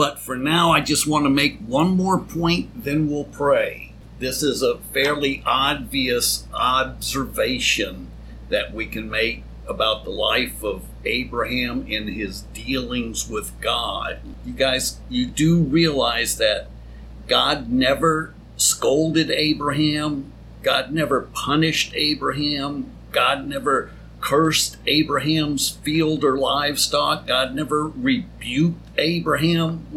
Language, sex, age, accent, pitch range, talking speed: English, male, 50-69, American, 130-160 Hz, 120 wpm